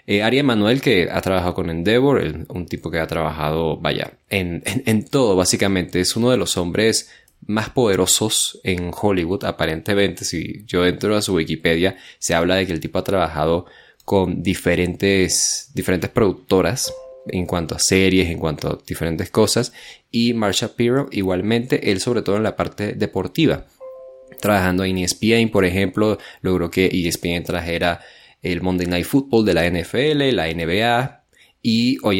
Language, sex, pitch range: Spanish, male, 85-105 Hz